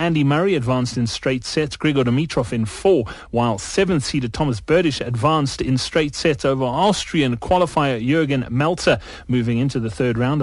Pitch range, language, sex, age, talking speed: 125-165 Hz, English, male, 30-49, 160 wpm